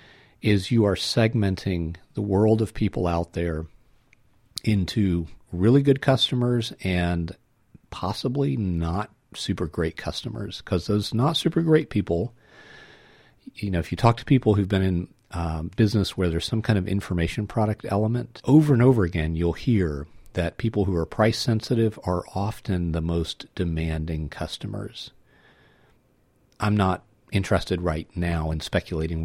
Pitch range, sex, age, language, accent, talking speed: 85-115 Hz, male, 50-69, English, American, 145 wpm